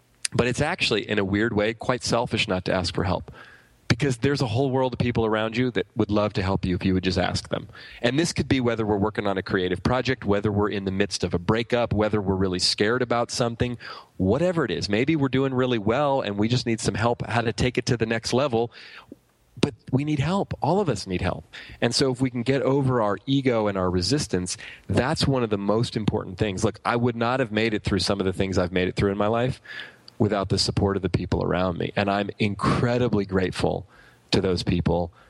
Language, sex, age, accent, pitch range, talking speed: English, male, 30-49, American, 100-130 Hz, 245 wpm